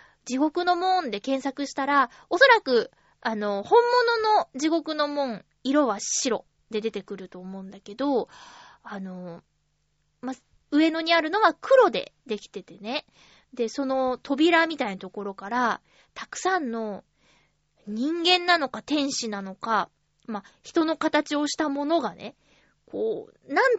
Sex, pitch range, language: female, 220-335 Hz, Japanese